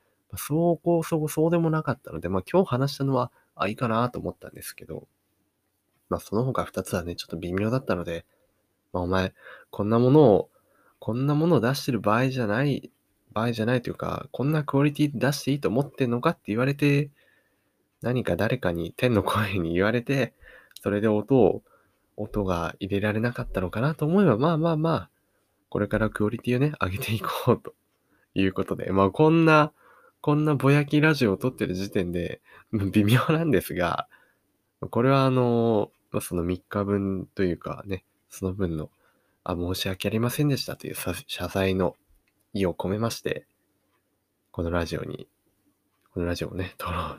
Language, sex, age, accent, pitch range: Japanese, male, 20-39, native, 95-135 Hz